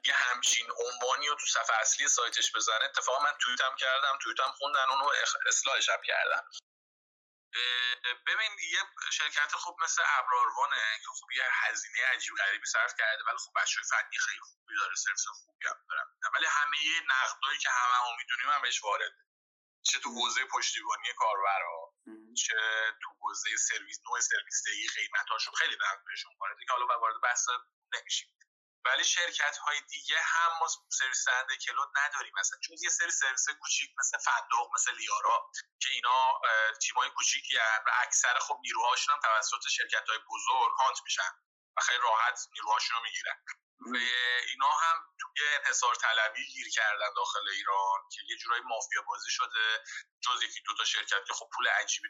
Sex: male